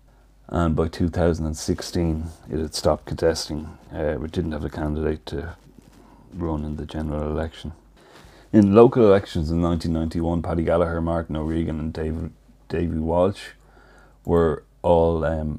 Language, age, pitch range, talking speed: English, 30-49, 80-90 Hz, 135 wpm